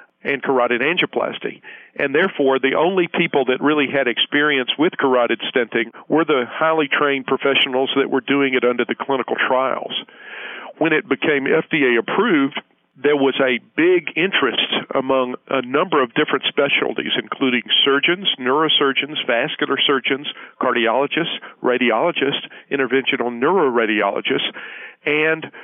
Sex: male